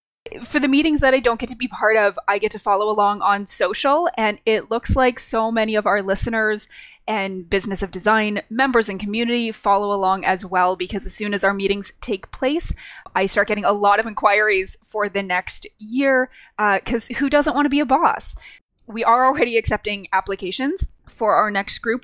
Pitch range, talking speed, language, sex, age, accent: 195-235 Hz, 205 wpm, English, female, 20-39, American